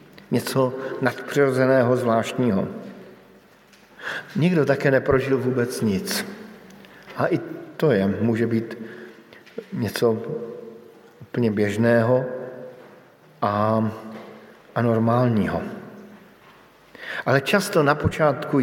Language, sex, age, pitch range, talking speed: Slovak, male, 50-69, 115-145 Hz, 75 wpm